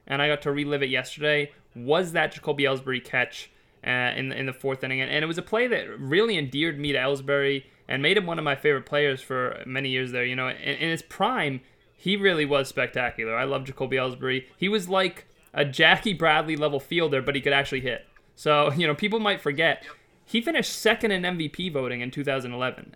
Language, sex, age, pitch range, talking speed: English, male, 20-39, 135-160 Hz, 205 wpm